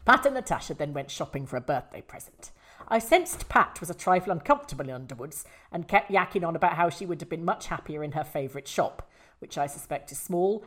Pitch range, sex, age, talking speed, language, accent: 155-225 Hz, female, 40-59, 225 wpm, English, British